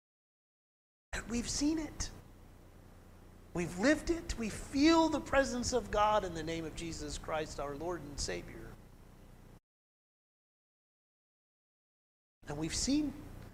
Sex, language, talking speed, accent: male, English, 110 wpm, American